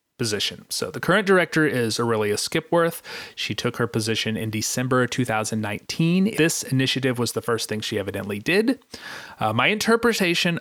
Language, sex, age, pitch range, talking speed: English, male, 30-49, 110-150 Hz, 155 wpm